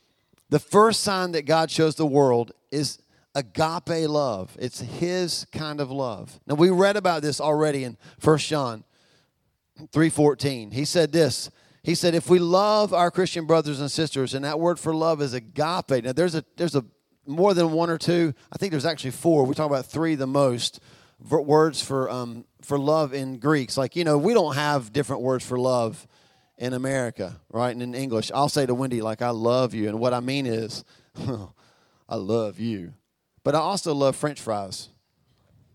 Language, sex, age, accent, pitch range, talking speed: English, male, 40-59, American, 125-165 Hz, 190 wpm